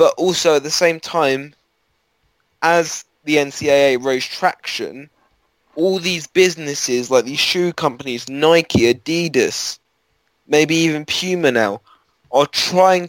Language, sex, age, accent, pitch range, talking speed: English, male, 10-29, British, 130-165 Hz, 120 wpm